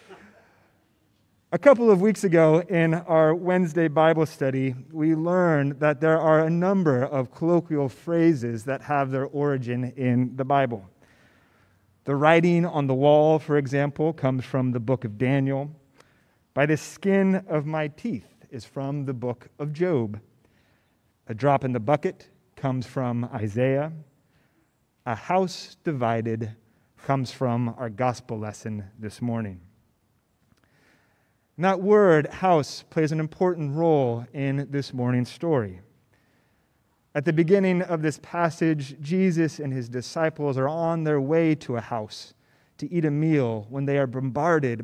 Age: 30-49